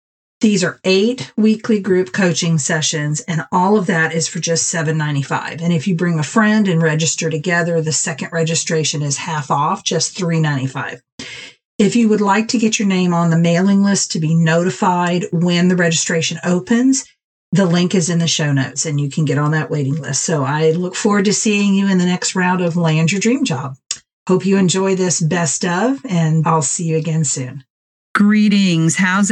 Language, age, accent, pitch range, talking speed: English, 40-59, American, 155-190 Hz, 195 wpm